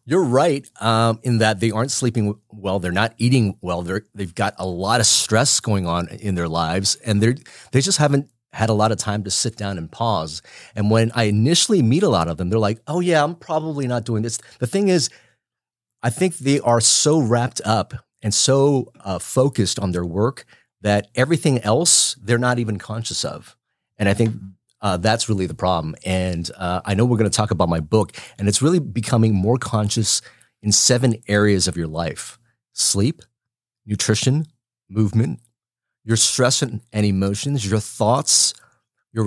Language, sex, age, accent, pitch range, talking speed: English, male, 30-49, American, 100-125 Hz, 190 wpm